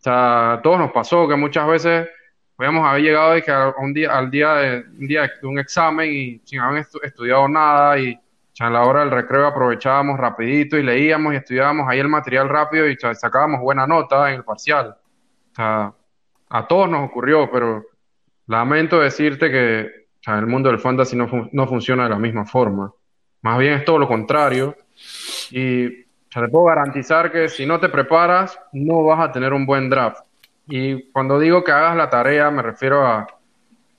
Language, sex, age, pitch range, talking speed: Spanish, male, 10-29, 125-155 Hz, 205 wpm